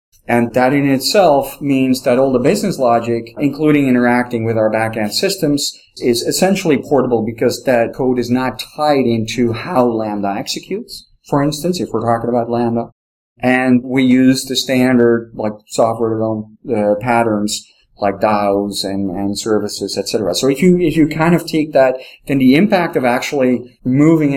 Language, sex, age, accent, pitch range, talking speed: English, male, 40-59, American, 105-130 Hz, 165 wpm